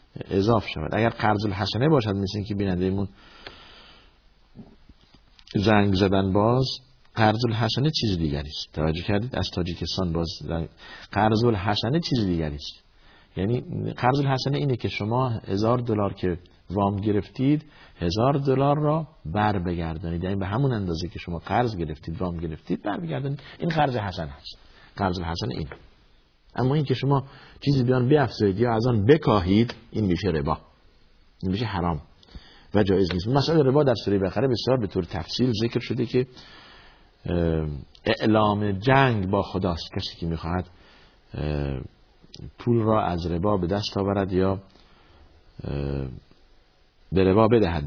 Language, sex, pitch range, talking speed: Persian, male, 85-120 Hz, 140 wpm